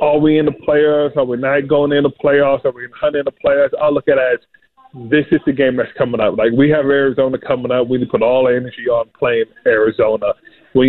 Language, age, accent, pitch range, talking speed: English, 20-39, American, 120-150 Hz, 260 wpm